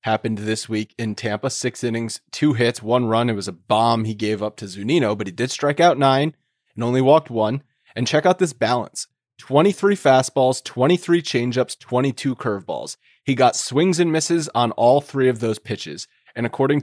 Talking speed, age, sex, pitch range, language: 195 wpm, 30-49, male, 115-150 Hz, English